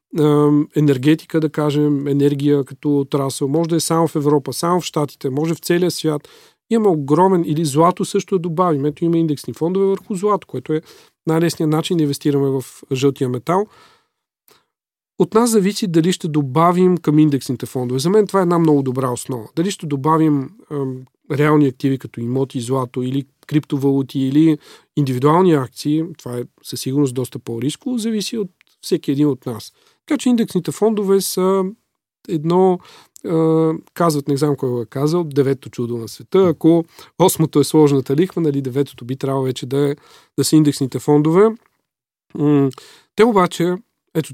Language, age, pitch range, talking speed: Bulgarian, 40-59, 135-165 Hz, 165 wpm